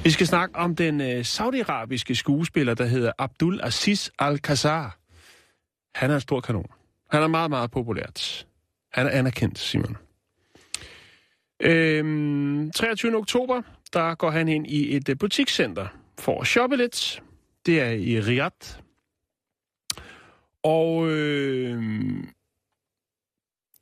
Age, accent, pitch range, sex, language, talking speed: 30-49, native, 120-165 Hz, male, Danish, 120 wpm